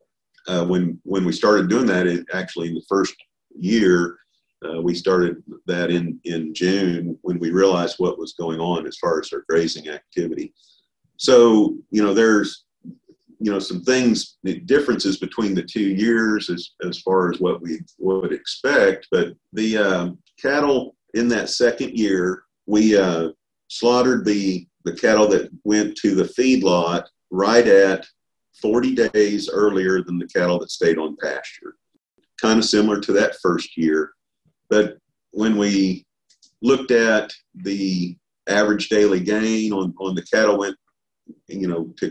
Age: 50-69